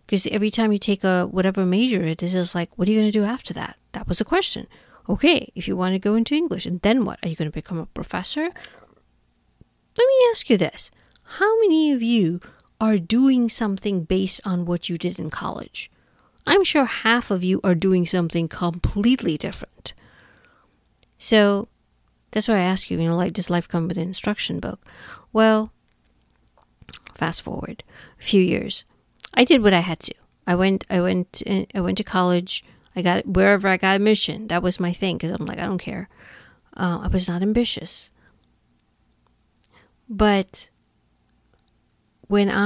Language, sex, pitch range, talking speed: English, female, 180-220 Hz, 185 wpm